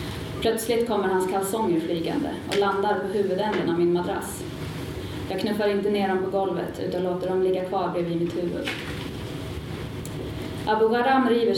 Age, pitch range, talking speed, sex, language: 30-49, 175-200 Hz, 155 wpm, female, Swedish